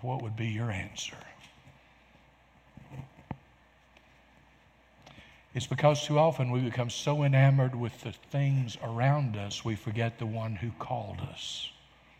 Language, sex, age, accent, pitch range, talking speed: English, male, 60-79, American, 120-145 Hz, 125 wpm